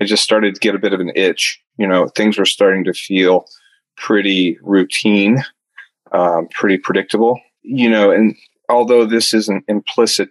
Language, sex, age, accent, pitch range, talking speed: English, male, 30-49, American, 95-115 Hz, 170 wpm